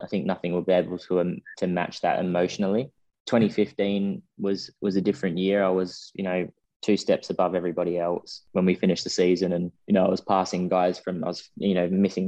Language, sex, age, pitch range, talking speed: English, male, 20-39, 90-95 Hz, 220 wpm